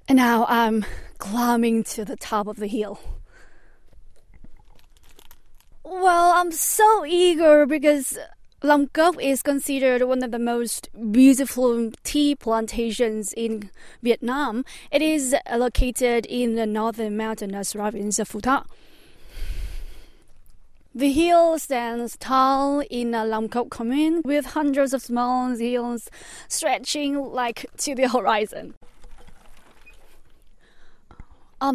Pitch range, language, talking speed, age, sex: 220-270 Hz, English, 115 wpm, 20-39, female